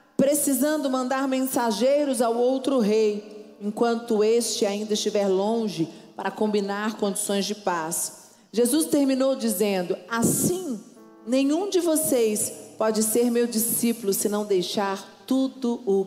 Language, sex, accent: Portuguese, female, Brazilian